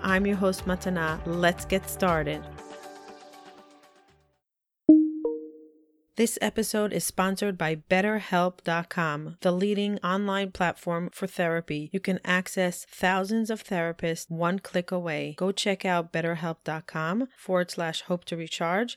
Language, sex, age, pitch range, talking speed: English, female, 30-49, 170-215 Hz, 115 wpm